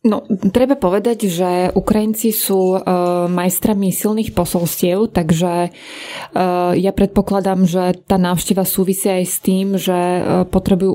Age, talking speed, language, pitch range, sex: 20-39, 115 wpm, Slovak, 180-195 Hz, female